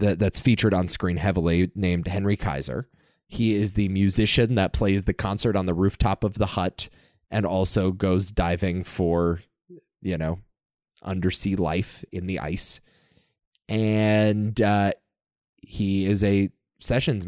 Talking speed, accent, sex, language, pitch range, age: 140 wpm, American, male, English, 95-120 Hz, 20-39